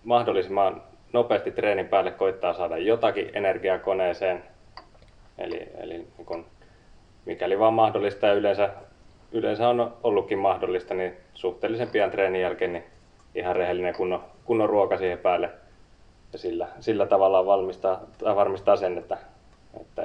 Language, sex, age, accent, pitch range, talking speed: Finnish, male, 20-39, native, 90-115 Hz, 125 wpm